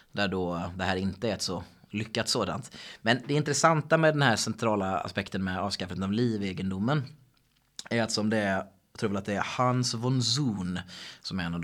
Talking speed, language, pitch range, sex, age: 200 wpm, Swedish, 95-115 Hz, male, 30-49